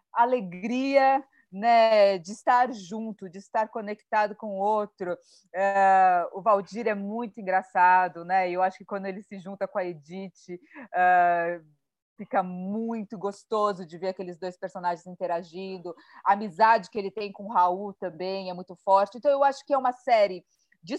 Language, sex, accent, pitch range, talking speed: Portuguese, female, Brazilian, 185-235 Hz, 160 wpm